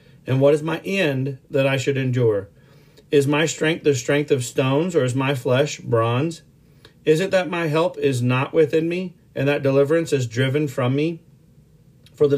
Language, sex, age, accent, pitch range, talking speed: English, male, 40-59, American, 130-155 Hz, 190 wpm